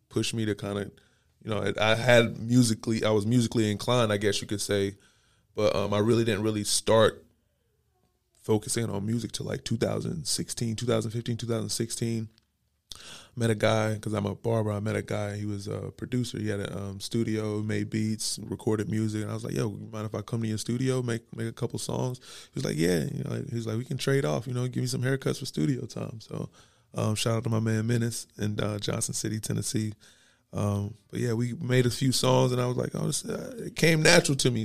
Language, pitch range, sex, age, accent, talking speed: English, 105-120 Hz, male, 20-39, American, 225 wpm